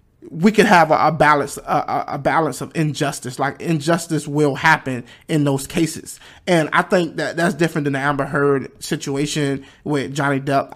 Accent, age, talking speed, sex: American, 20-39, 180 wpm, male